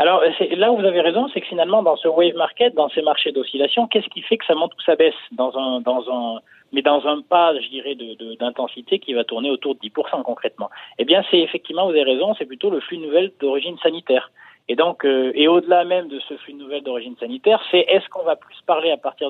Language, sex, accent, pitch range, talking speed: French, male, French, 135-185 Hz, 260 wpm